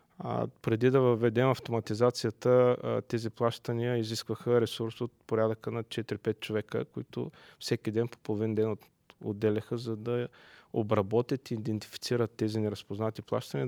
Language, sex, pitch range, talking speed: Bulgarian, male, 110-125 Hz, 125 wpm